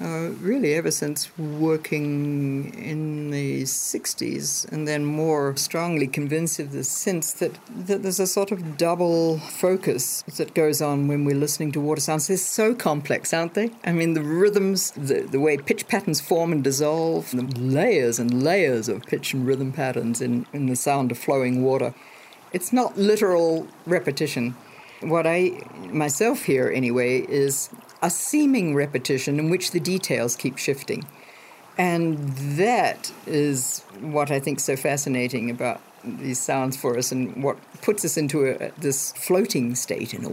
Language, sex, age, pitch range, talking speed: English, female, 60-79, 140-170 Hz, 165 wpm